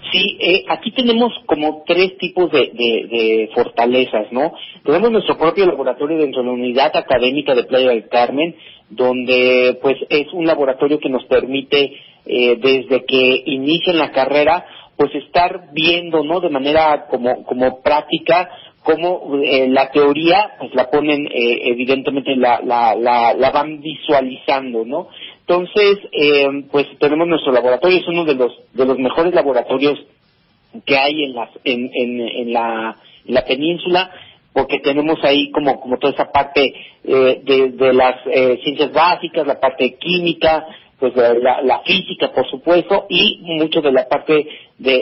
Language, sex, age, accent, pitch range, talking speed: Spanish, male, 40-59, Mexican, 130-160 Hz, 160 wpm